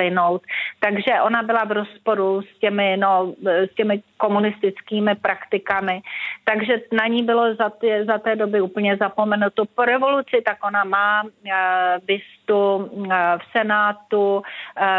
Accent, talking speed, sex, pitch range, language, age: native, 135 wpm, female, 195-220 Hz, Czech, 40-59